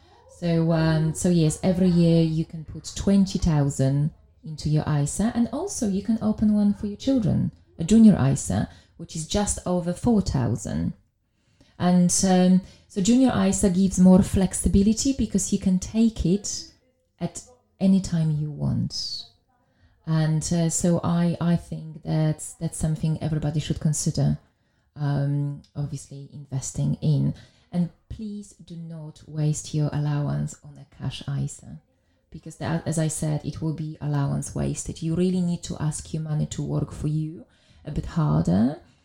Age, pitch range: 20-39, 150-180 Hz